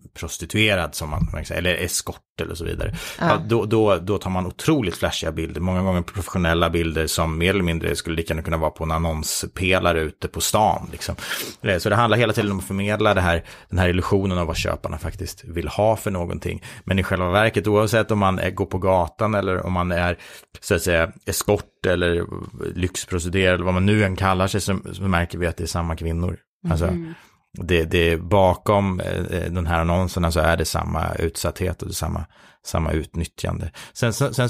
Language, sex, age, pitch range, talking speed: Swedish, male, 30-49, 85-105 Hz, 200 wpm